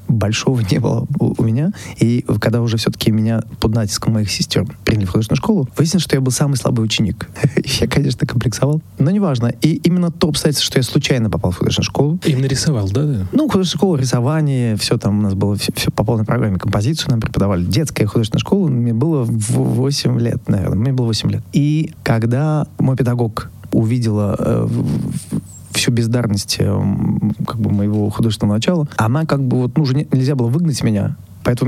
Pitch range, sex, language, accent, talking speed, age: 110-150 Hz, male, Russian, native, 180 wpm, 20-39